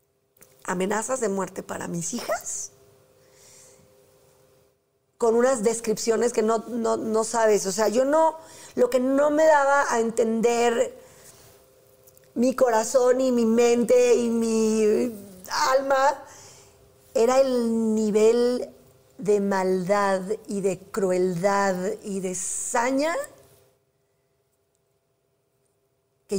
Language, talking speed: Spanish, 100 wpm